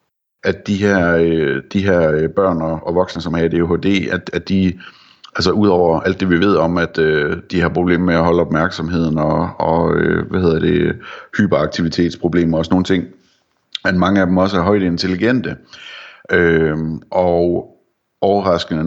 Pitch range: 85-95 Hz